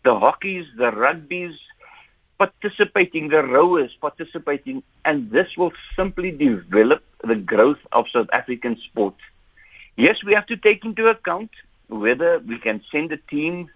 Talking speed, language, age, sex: 140 wpm, English, 60-79, male